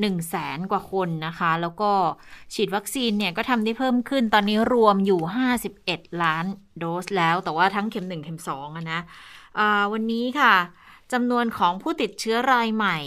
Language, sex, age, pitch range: Thai, female, 20-39, 175-220 Hz